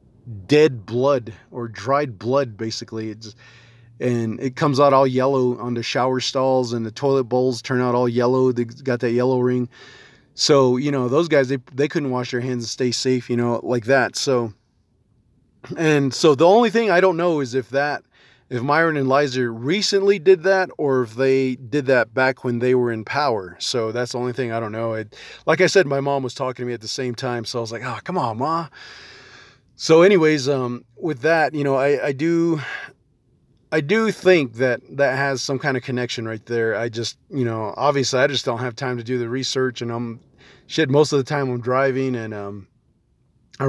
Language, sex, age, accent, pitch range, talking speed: English, male, 30-49, American, 120-140 Hz, 215 wpm